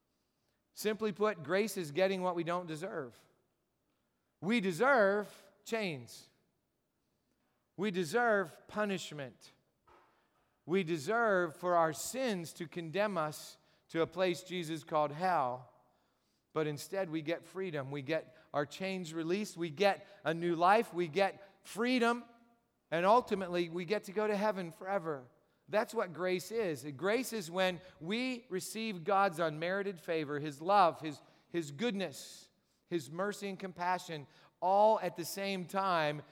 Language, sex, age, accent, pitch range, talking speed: English, male, 40-59, American, 150-195 Hz, 135 wpm